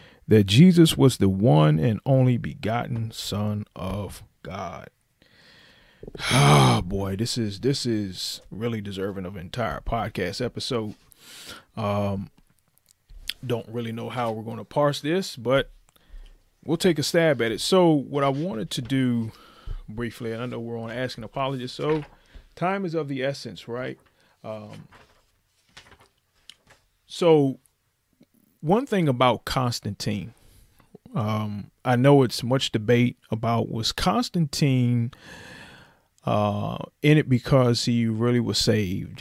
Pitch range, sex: 110-135 Hz, male